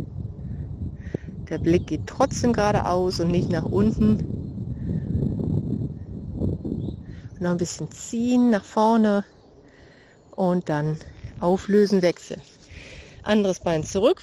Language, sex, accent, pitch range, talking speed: German, female, German, 175-225 Hz, 95 wpm